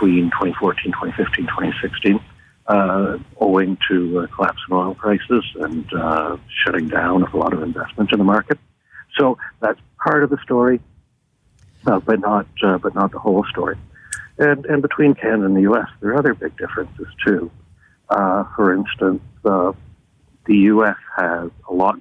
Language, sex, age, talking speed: English, male, 60-79, 165 wpm